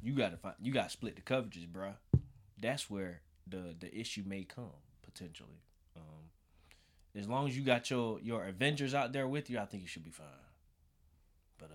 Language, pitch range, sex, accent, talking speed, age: English, 80-110 Hz, male, American, 190 wpm, 20-39